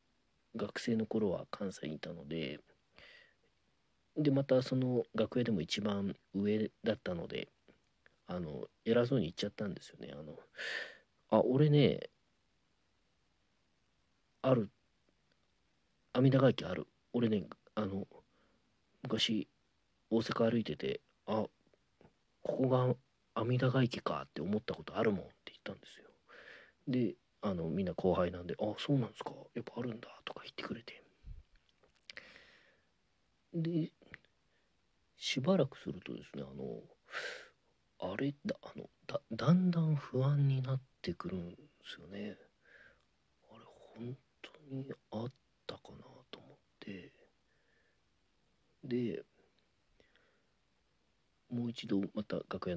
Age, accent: 40-59, native